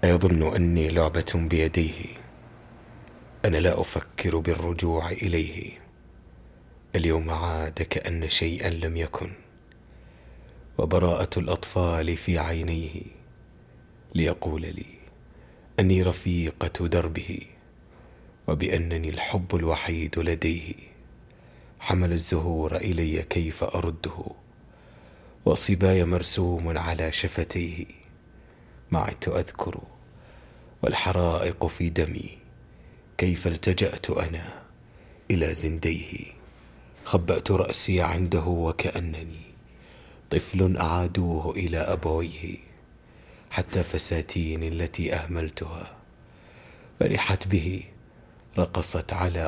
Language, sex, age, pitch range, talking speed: Arabic, male, 30-49, 80-90 Hz, 75 wpm